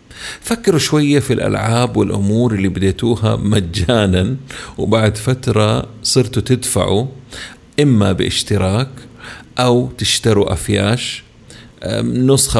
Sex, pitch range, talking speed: male, 100-125 Hz, 85 wpm